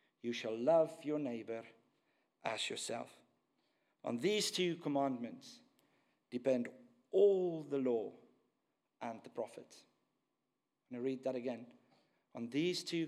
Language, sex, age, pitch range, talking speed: English, male, 50-69, 135-175 Hz, 120 wpm